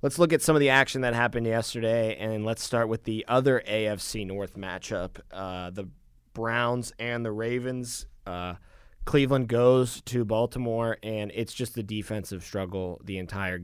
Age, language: 20-39, English